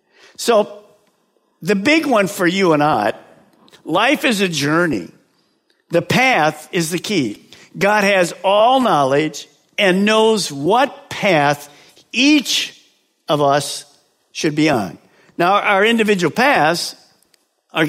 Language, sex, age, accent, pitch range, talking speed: English, male, 50-69, American, 150-200 Hz, 120 wpm